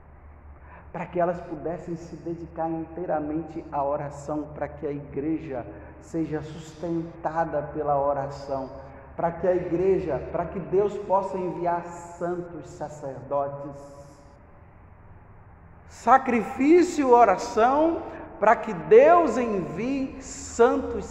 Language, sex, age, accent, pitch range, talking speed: Portuguese, male, 50-69, Brazilian, 135-190 Hz, 100 wpm